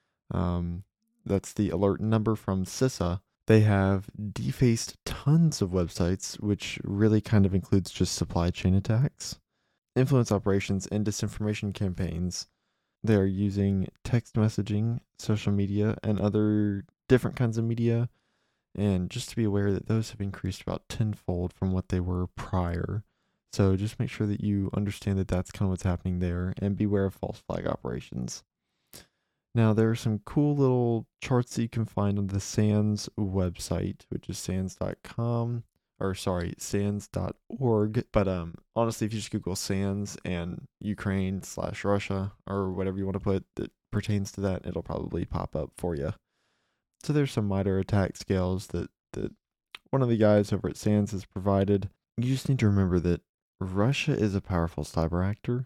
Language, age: English, 20-39